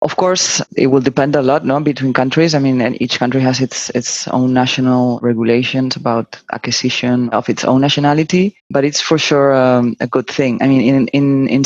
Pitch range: 130-155 Hz